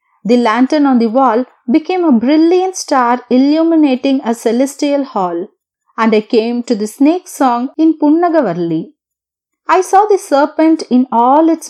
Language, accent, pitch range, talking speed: Tamil, native, 235-315 Hz, 155 wpm